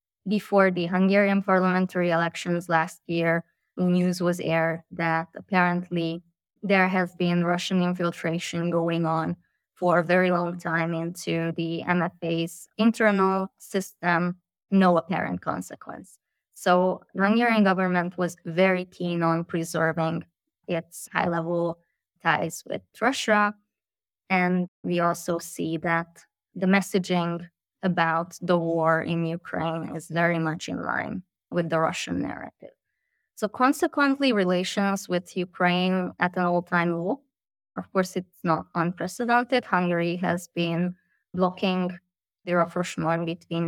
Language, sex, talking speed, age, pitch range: English, female, 120 wpm, 20-39, 165-185 Hz